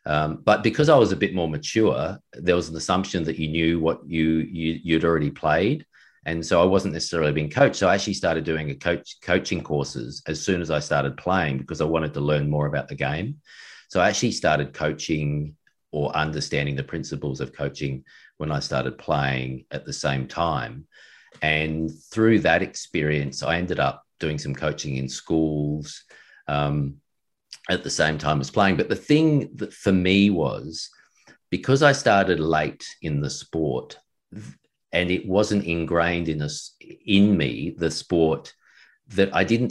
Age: 40-59